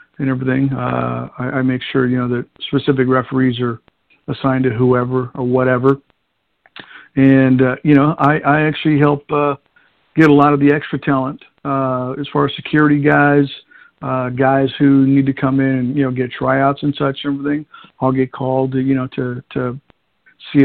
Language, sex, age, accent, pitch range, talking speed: English, male, 50-69, American, 130-145 Hz, 185 wpm